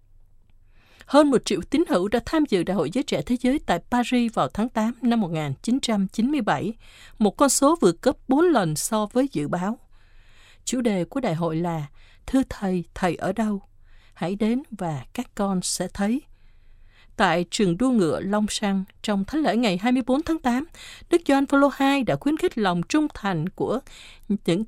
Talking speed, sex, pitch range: 180 wpm, female, 175-260 Hz